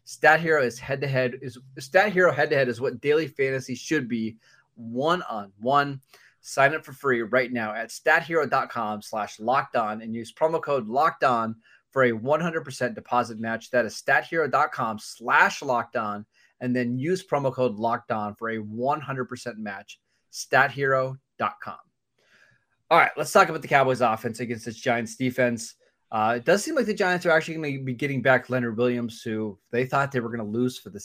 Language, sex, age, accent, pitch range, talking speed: English, male, 30-49, American, 115-135 Hz, 195 wpm